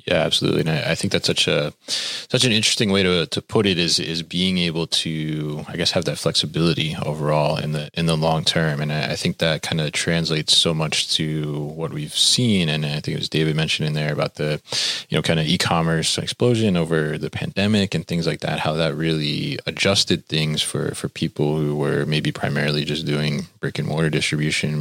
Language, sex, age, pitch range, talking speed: English, male, 20-39, 75-80 Hz, 220 wpm